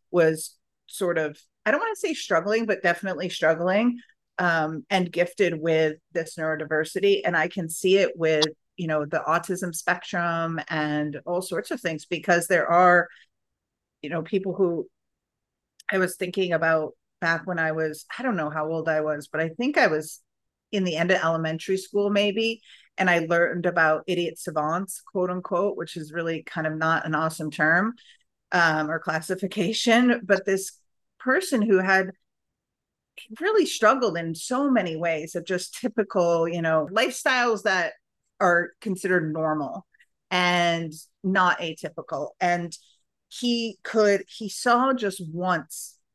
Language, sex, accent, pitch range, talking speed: English, female, American, 160-200 Hz, 155 wpm